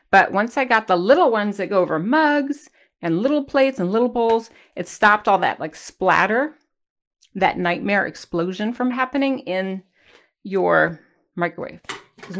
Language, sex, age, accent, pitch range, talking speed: English, female, 40-59, American, 180-245 Hz, 155 wpm